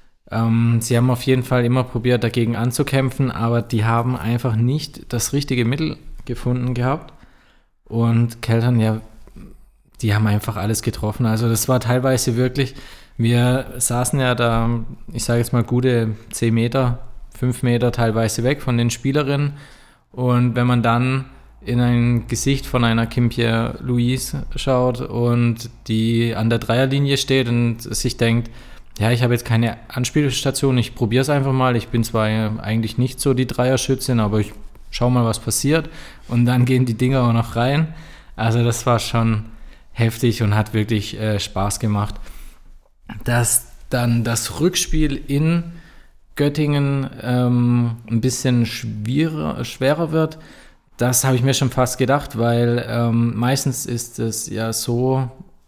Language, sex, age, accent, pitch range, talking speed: German, male, 20-39, German, 115-130 Hz, 150 wpm